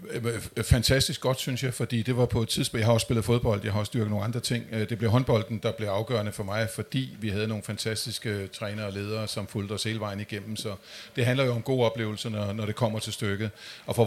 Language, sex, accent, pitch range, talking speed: Danish, male, native, 115-140 Hz, 245 wpm